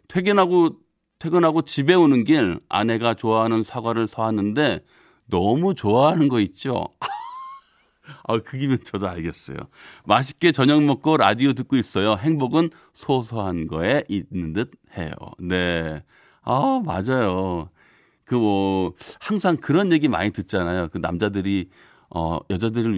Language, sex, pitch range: Korean, male, 100-150 Hz